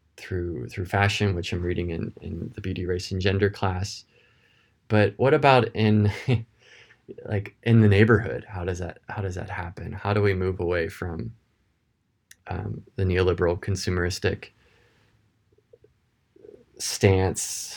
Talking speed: 135 wpm